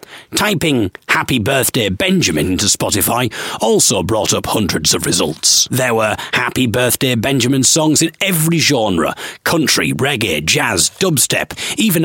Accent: British